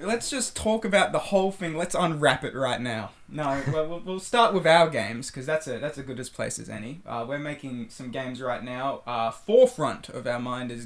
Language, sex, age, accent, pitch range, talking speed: English, male, 20-39, Australian, 125-160 Hz, 230 wpm